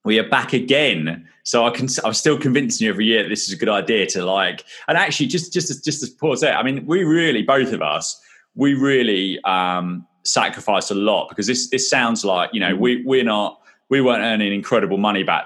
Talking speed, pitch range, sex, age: 225 wpm, 90-130 Hz, male, 20-39